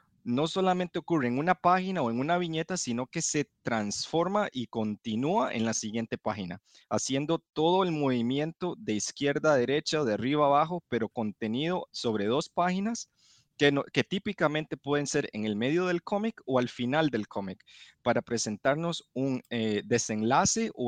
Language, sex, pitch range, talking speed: Spanish, male, 115-160 Hz, 170 wpm